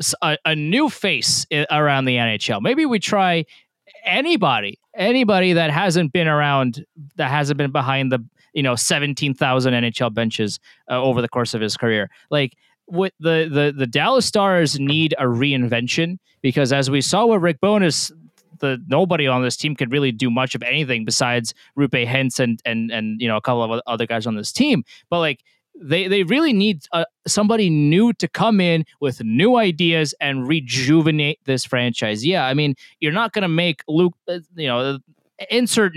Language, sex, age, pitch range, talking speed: English, male, 20-39, 130-175 Hz, 180 wpm